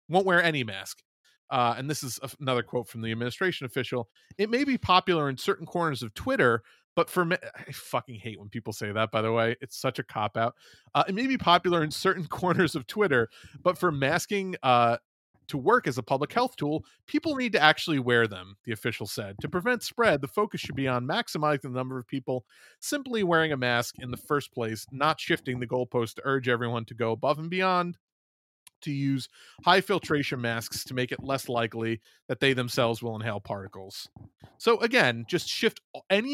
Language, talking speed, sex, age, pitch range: English, 205 wpm, male, 30-49, 120-175 Hz